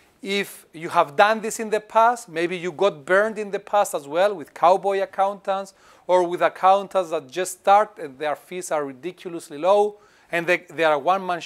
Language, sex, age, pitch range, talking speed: Greek, male, 40-59, 170-205 Hz, 200 wpm